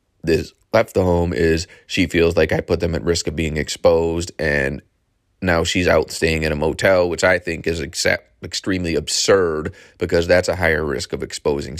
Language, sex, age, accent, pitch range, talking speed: English, male, 30-49, American, 85-110 Hz, 190 wpm